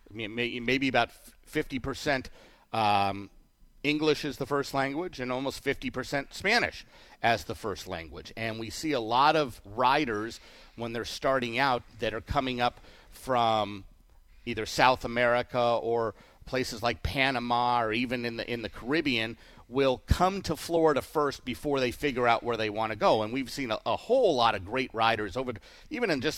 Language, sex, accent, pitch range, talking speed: English, male, American, 115-135 Hz, 170 wpm